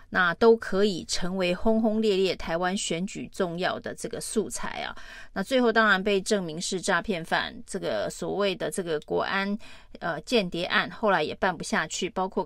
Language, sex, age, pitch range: Chinese, female, 30-49, 180-220 Hz